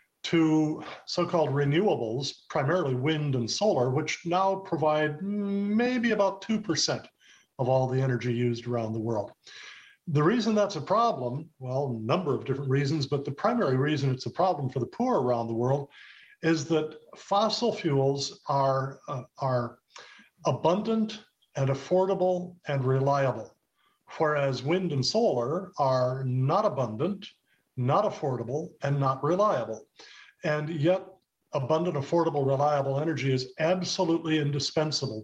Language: English